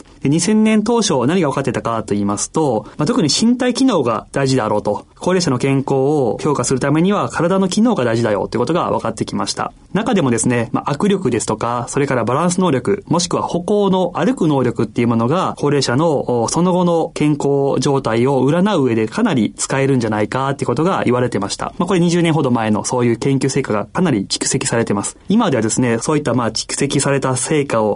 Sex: male